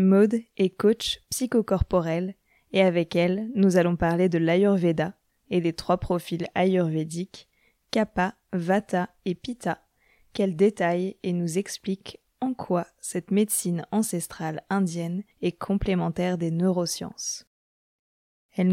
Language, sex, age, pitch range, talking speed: French, female, 20-39, 170-195 Hz, 120 wpm